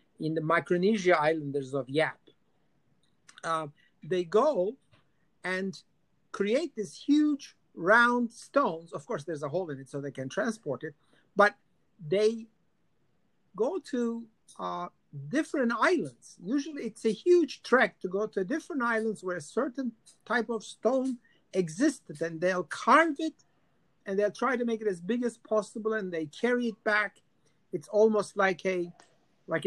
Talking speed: 150 wpm